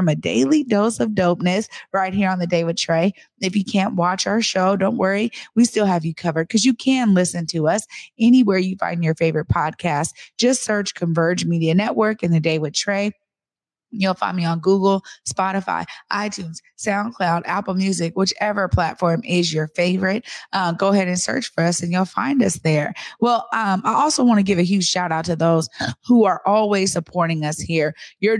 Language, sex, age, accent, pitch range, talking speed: English, female, 30-49, American, 170-210 Hz, 200 wpm